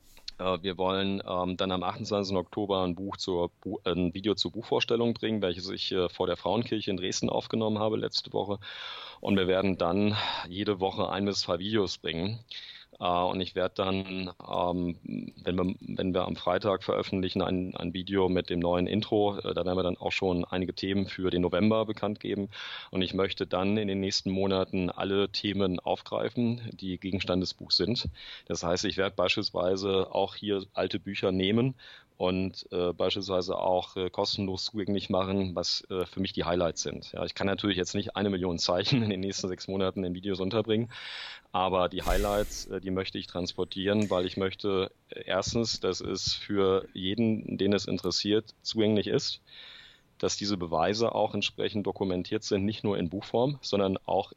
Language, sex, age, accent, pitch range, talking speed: German, male, 30-49, German, 90-100 Hz, 180 wpm